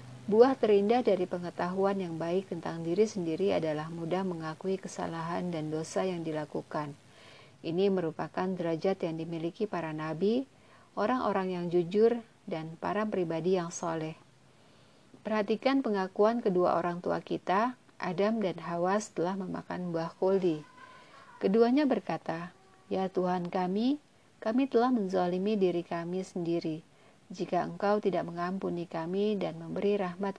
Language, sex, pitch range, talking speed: Indonesian, female, 165-210 Hz, 125 wpm